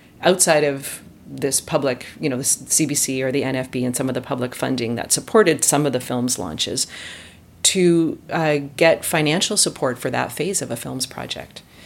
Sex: female